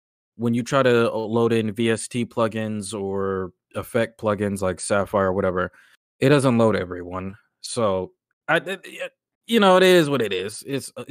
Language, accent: English, American